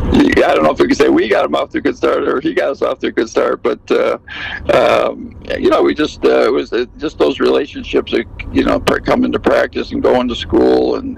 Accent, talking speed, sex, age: American, 250 wpm, male, 60-79